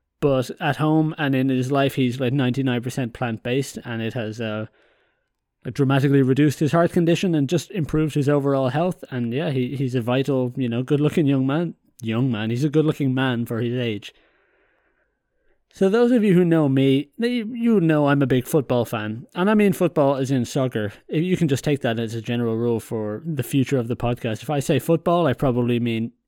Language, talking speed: English, 205 wpm